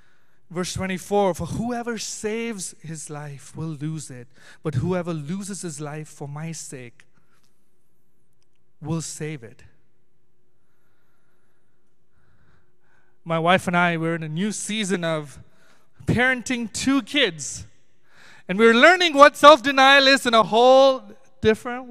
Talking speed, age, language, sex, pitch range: 120 wpm, 30-49, English, male, 185-280 Hz